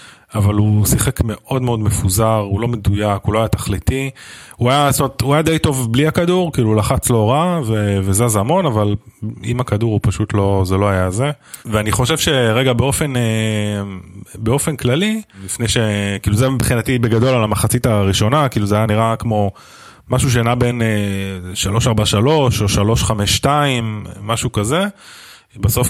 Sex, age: male, 20-39